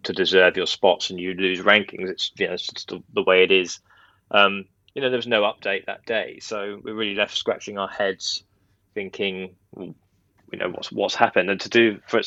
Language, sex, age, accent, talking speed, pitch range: English, male, 20-39, British, 220 wpm, 95-100 Hz